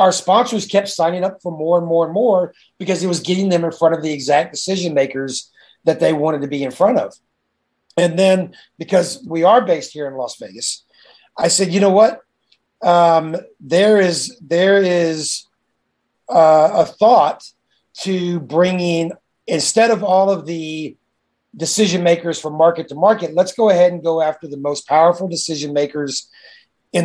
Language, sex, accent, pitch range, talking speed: English, male, American, 160-190 Hz, 175 wpm